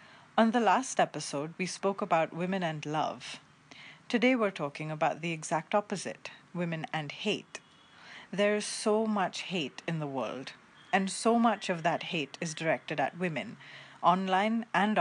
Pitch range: 160-205 Hz